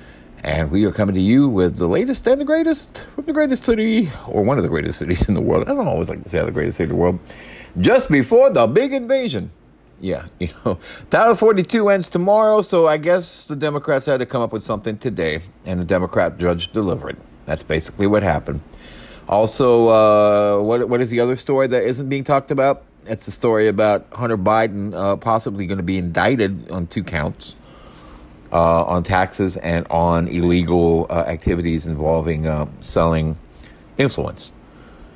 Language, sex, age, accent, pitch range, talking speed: English, male, 50-69, American, 80-120 Hz, 190 wpm